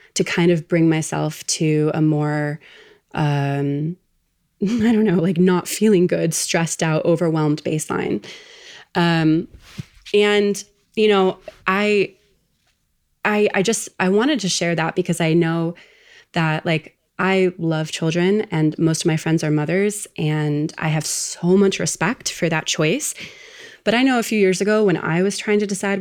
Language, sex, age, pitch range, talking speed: English, female, 20-39, 160-200 Hz, 160 wpm